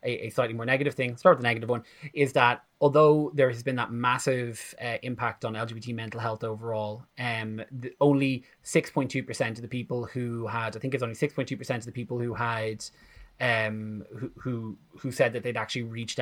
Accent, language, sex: Irish, English, male